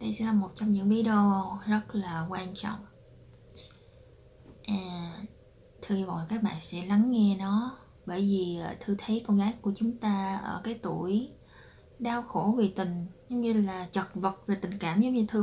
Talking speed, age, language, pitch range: 185 wpm, 20-39, Vietnamese, 180-220 Hz